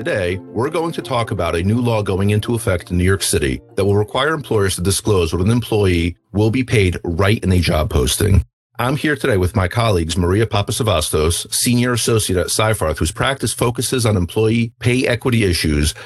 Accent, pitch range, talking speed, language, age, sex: American, 90-115 Hz, 200 wpm, English, 40-59, male